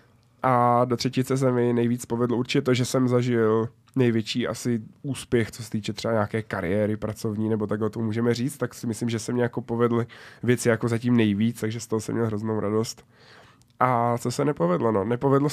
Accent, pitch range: native, 115-130 Hz